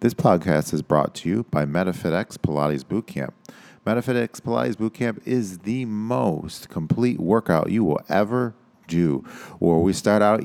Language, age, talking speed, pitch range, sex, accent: English, 40-59, 150 wpm, 80-100 Hz, male, American